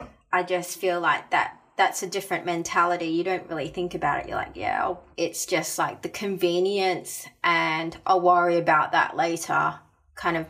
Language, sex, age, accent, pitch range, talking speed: English, female, 20-39, Australian, 170-195 Hz, 185 wpm